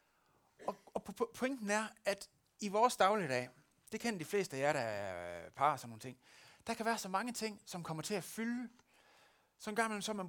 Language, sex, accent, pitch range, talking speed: Danish, male, native, 140-205 Hz, 190 wpm